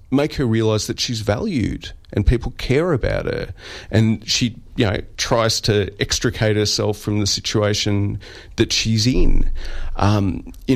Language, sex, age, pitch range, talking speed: English, male, 30-49, 90-115 Hz, 150 wpm